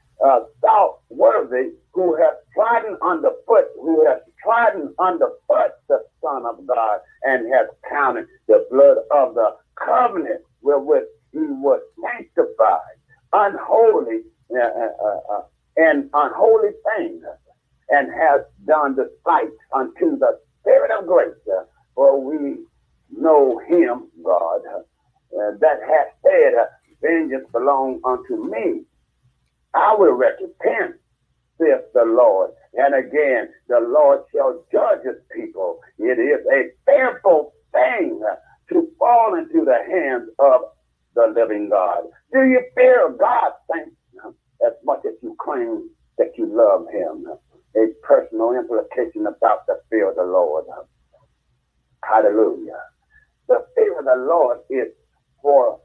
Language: English